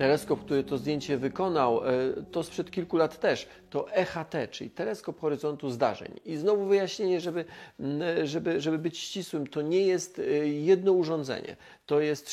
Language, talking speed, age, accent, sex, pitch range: Polish, 150 wpm, 40-59, native, male, 120-170 Hz